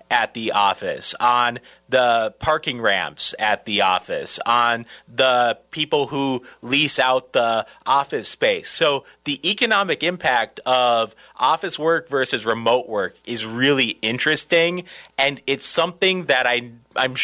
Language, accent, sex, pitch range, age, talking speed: English, American, male, 130-185 Hz, 30-49, 130 wpm